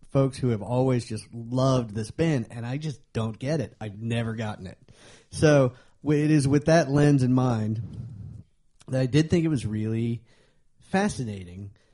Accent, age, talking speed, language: American, 40-59, 170 wpm, English